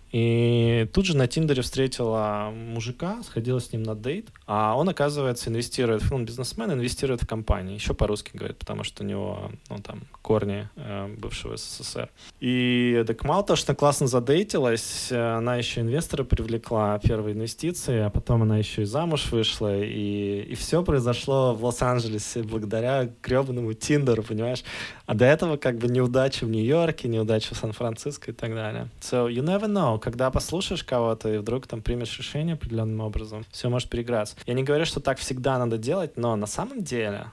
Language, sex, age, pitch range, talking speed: Russian, male, 20-39, 110-130 Hz, 170 wpm